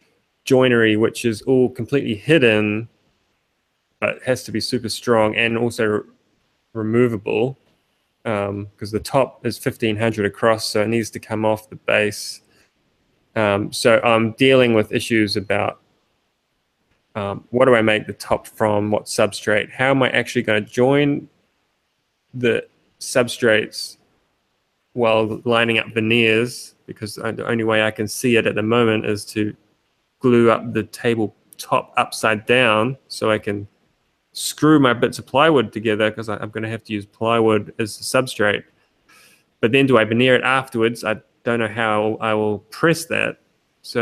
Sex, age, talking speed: male, 20-39, 160 wpm